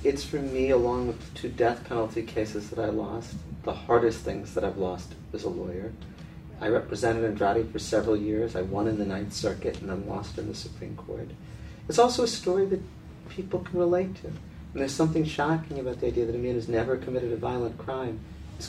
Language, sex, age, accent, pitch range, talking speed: English, male, 40-59, American, 115-160 Hz, 215 wpm